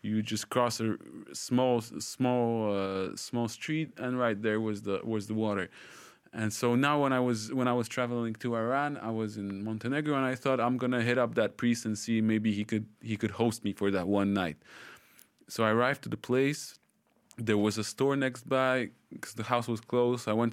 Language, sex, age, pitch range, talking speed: Polish, male, 20-39, 105-125 Hz, 220 wpm